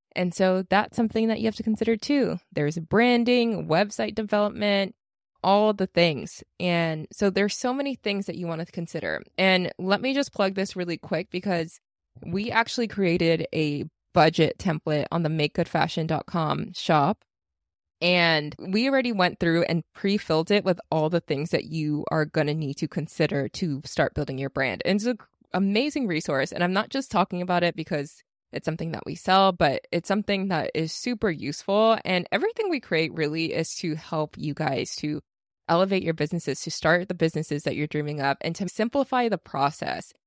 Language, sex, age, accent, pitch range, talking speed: English, female, 20-39, American, 155-200 Hz, 185 wpm